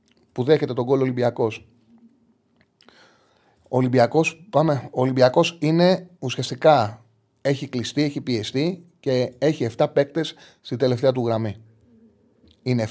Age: 30-49